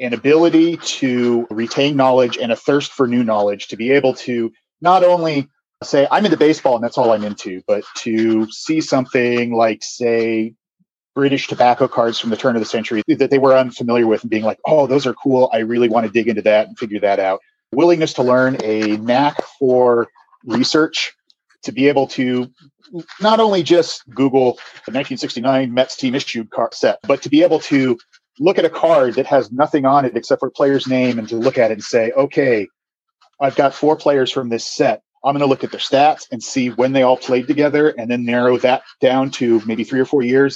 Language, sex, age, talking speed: English, male, 40-59, 215 wpm